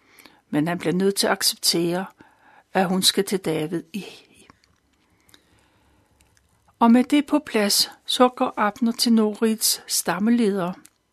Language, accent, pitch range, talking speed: Danish, native, 190-240 Hz, 130 wpm